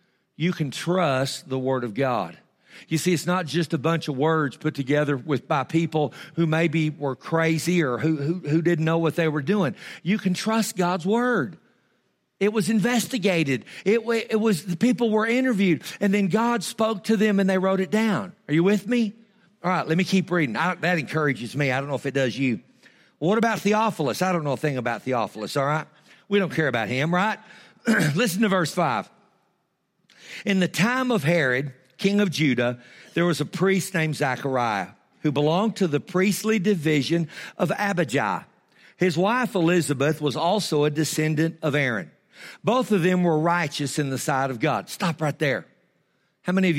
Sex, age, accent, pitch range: male, 50-69, American, 145-195 Hz